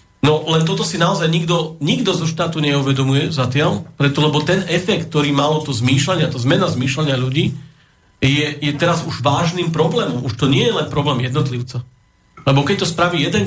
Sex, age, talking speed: male, 40-59, 185 wpm